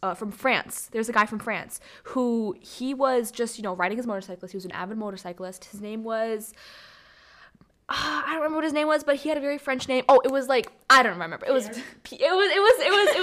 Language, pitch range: English, 195-250 Hz